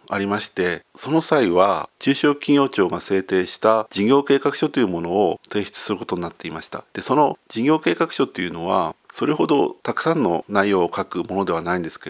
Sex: male